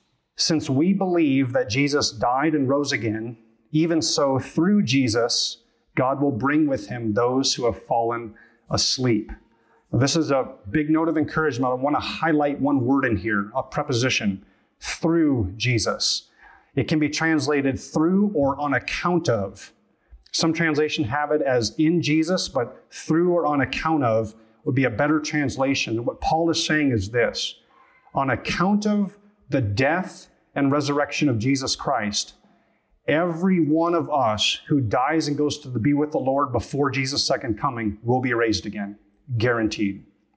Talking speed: 160 wpm